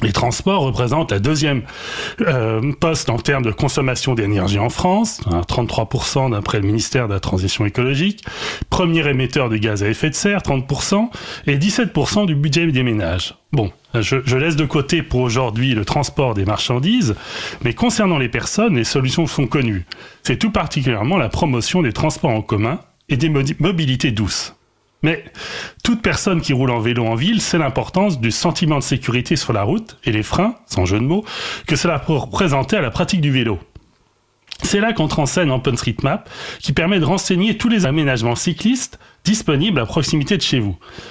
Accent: French